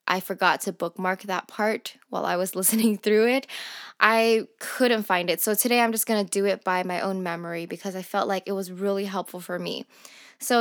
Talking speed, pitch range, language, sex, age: 220 wpm, 195-230 Hz, English, female, 10-29